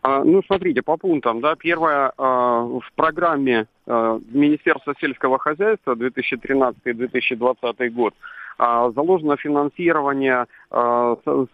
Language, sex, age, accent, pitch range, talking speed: Russian, male, 40-59, native, 130-155 Hz, 105 wpm